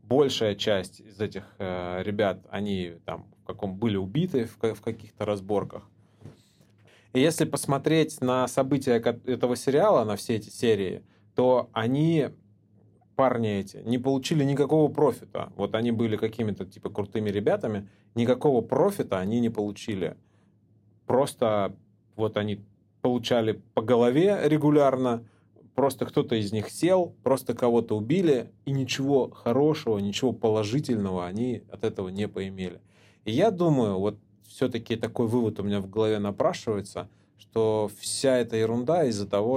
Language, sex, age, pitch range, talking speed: Russian, male, 30-49, 100-125 Hz, 135 wpm